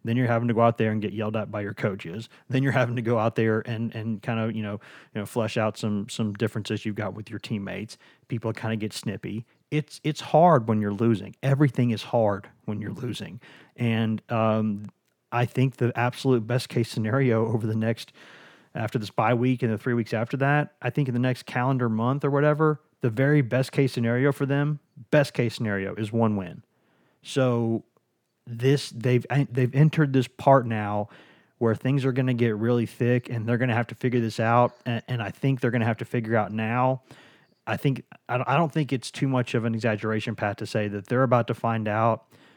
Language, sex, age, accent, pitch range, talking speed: English, male, 30-49, American, 110-130 Hz, 220 wpm